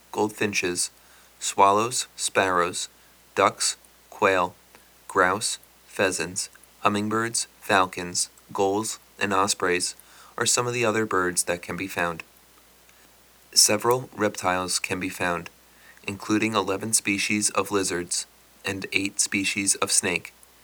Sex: male